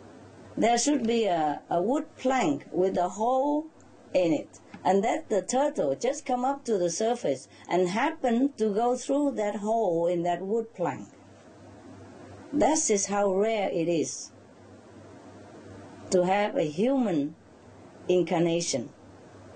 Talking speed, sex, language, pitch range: 135 wpm, female, English, 175-240 Hz